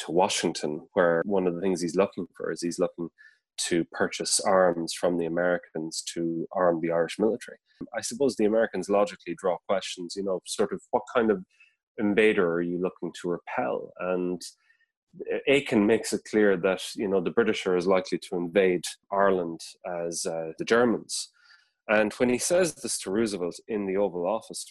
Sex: male